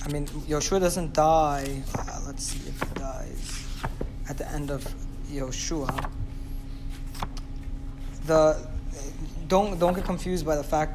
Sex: male